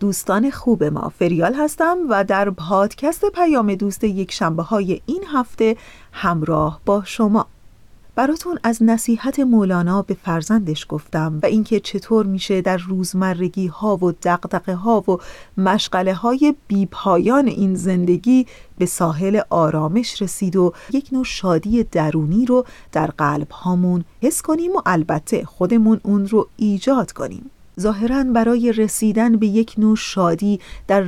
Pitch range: 180-230 Hz